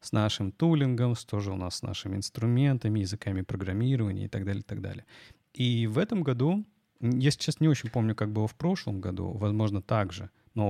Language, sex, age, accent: Russian, male, 30-49, native